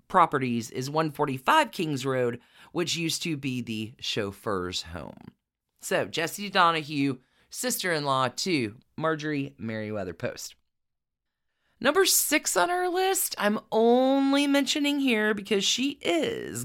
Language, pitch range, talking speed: English, 150-215 Hz, 115 wpm